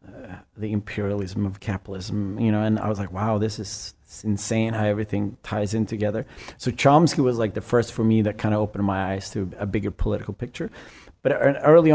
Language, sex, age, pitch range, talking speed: English, male, 30-49, 105-120 Hz, 205 wpm